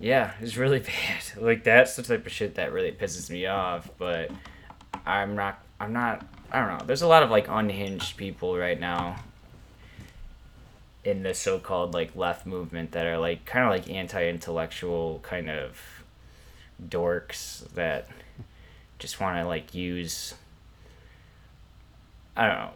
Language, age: English, 20-39